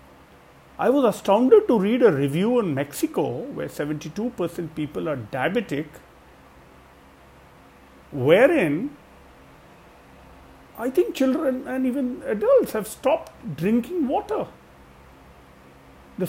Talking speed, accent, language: 95 wpm, Indian, English